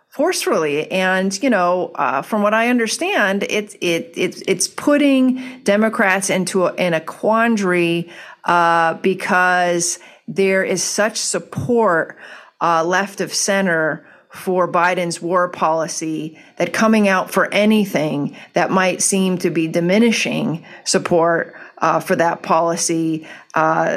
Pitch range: 170-210 Hz